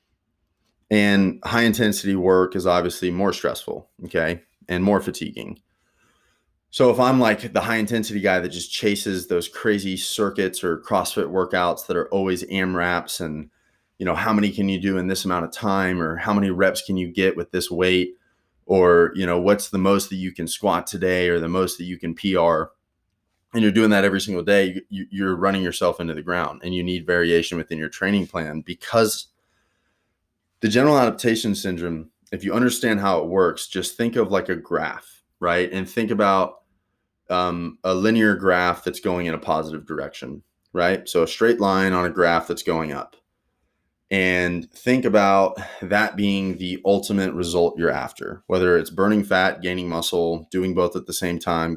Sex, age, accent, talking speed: male, 20-39, American, 185 wpm